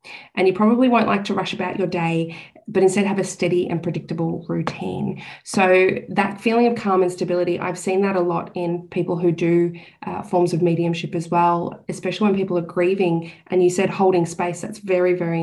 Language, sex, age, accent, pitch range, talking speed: English, female, 20-39, Australian, 175-210 Hz, 205 wpm